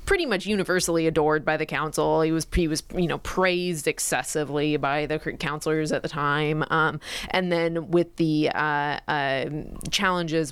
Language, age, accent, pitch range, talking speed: English, 20-39, American, 145-170 Hz, 165 wpm